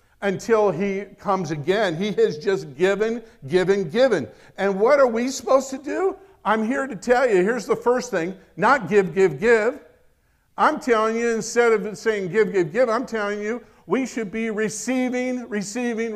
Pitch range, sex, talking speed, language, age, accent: 190-260 Hz, male, 175 wpm, English, 50-69, American